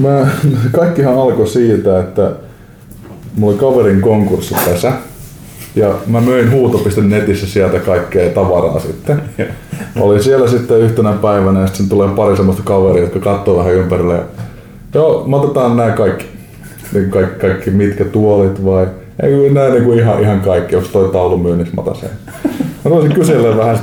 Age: 20-39